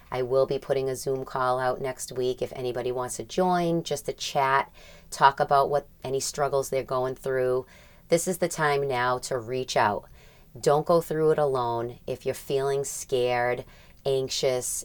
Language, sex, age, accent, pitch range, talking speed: English, female, 30-49, American, 125-145 Hz, 180 wpm